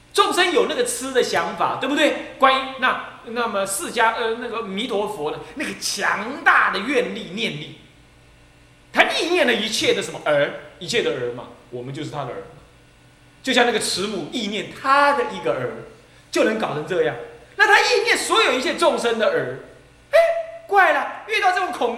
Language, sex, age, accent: Chinese, male, 30-49, native